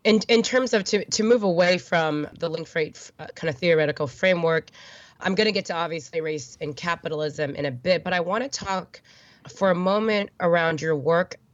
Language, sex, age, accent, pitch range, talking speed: English, female, 20-39, American, 155-185 Hz, 210 wpm